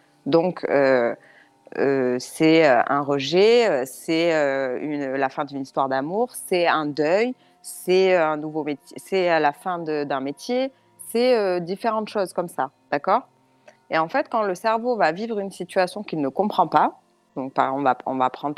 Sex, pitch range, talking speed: female, 150-205 Hz, 175 wpm